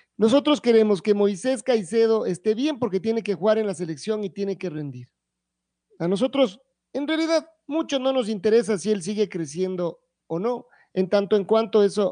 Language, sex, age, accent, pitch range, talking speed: Spanish, male, 40-59, Mexican, 175-225 Hz, 185 wpm